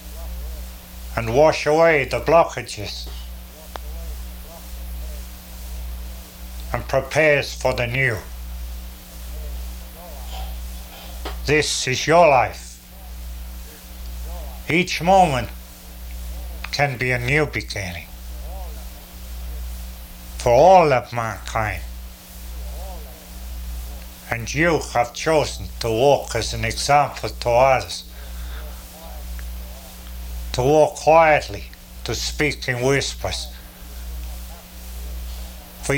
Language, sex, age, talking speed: English, male, 60-79, 75 wpm